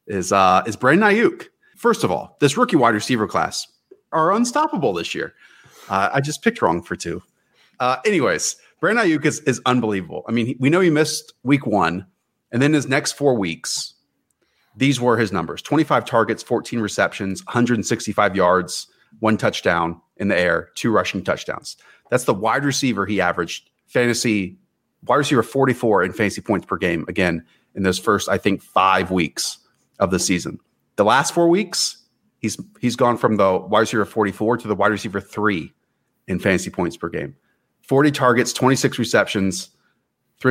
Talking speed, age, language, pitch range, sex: 175 wpm, 30-49, English, 100-135 Hz, male